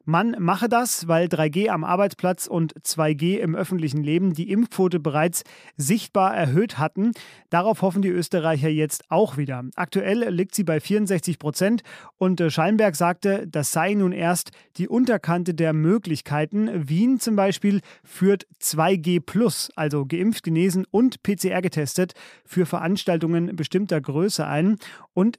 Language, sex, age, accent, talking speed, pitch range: German, male, 30-49, German, 135 wpm, 160-200 Hz